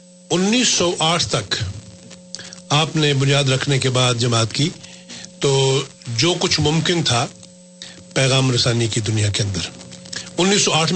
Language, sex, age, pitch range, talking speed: Urdu, male, 40-59, 130-180 Hz, 115 wpm